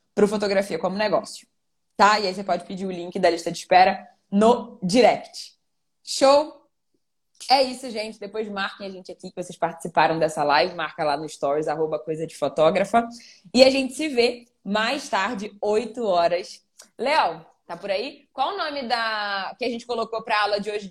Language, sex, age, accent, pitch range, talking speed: Portuguese, female, 10-29, Brazilian, 175-230 Hz, 190 wpm